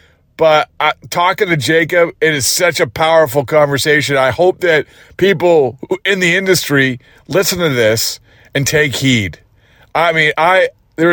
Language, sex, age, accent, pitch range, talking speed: English, male, 40-59, American, 125-165 Hz, 150 wpm